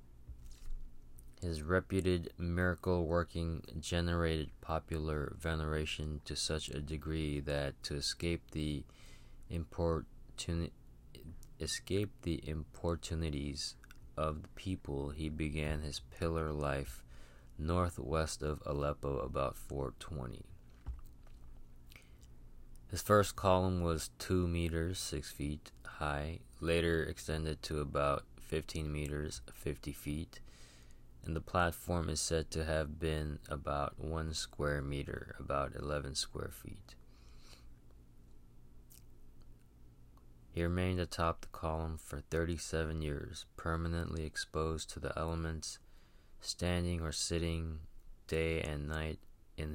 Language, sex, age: English, male, 20-39